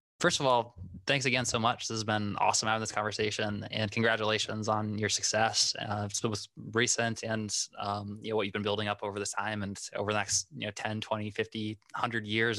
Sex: male